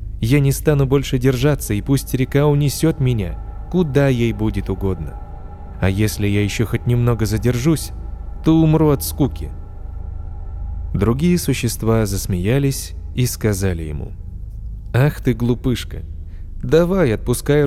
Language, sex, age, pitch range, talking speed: Russian, male, 20-39, 90-130 Hz, 120 wpm